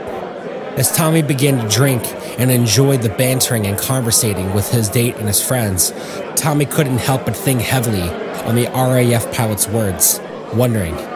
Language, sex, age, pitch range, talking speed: English, male, 30-49, 110-135 Hz, 155 wpm